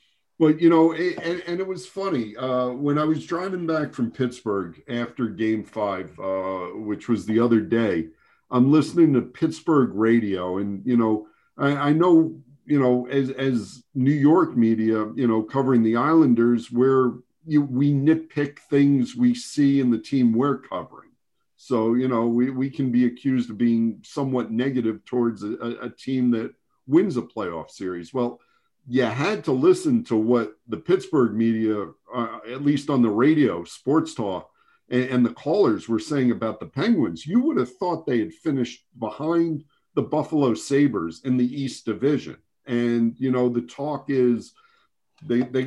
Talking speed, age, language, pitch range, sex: 170 wpm, 50-69, English, 115-150 Hz, male